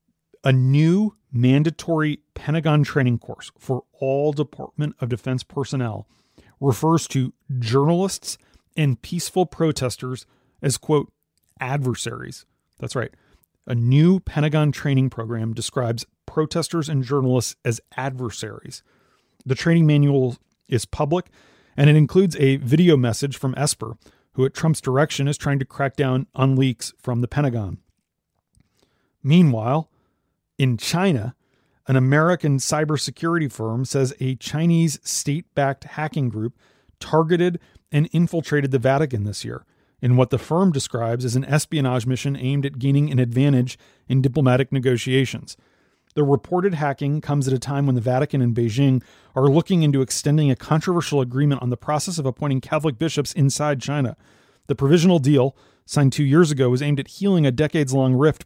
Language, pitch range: English, 130-150 Hz